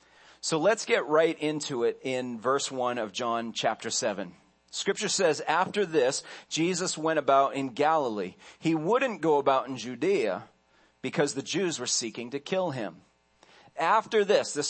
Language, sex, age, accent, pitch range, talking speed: English, male, 40-59, American, 125-160 Hz, 160 wpm